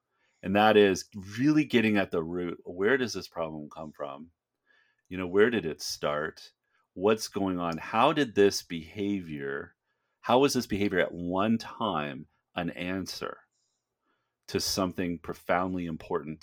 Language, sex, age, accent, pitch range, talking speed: English, male, 40-59, American, 85-105 Hz, 145 wpm